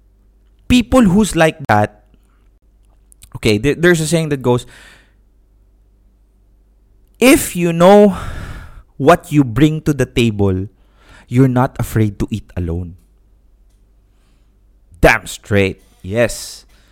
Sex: male